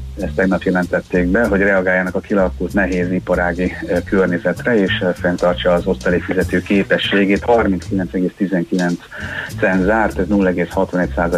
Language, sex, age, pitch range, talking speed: Hungarian, male, 30-49, 90-105 Hz, 110 wpm